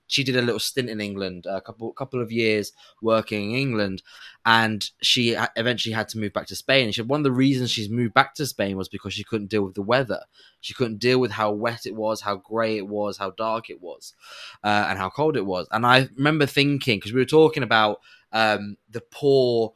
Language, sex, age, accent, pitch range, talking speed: English, male, 20-39, British, 105-125 Hz, 235 wpm